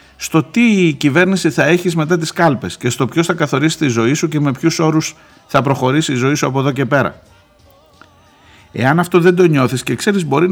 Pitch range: 115-170 Hz